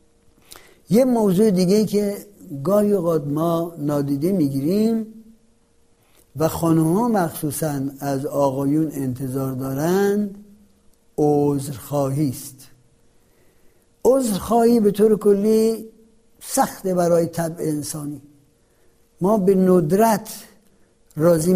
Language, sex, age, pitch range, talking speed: Persian, male, 60-79, 145-205 Hz, 85 wpm